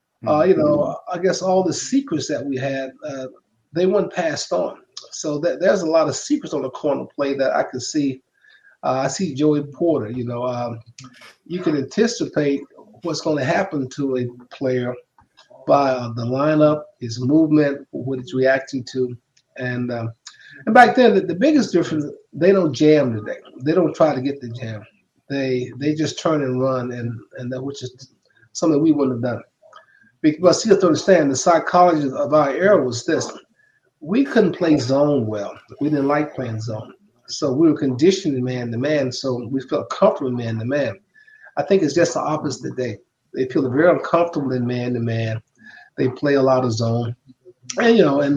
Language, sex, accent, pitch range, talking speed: English, male, American, 125-175 Hz, 190 wpm